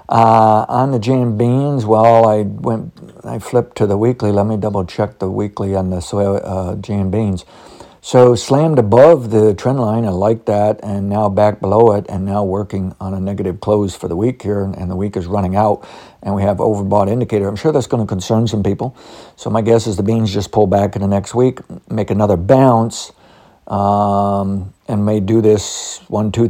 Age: 60-79